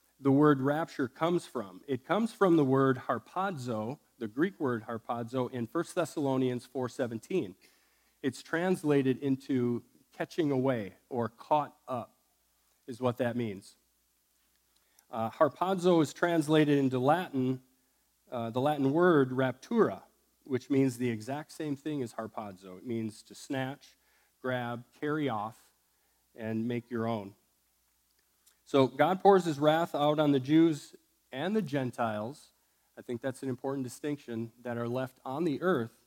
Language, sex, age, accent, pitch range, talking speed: English, male, 40-59, American, 115-150 Hz, 140 wpm